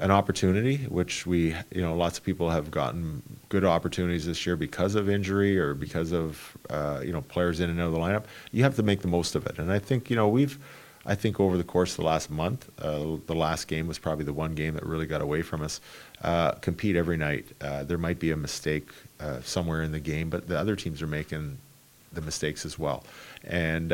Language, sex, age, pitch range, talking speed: English, male, 40-59, 75-90 Hz, 240 wpm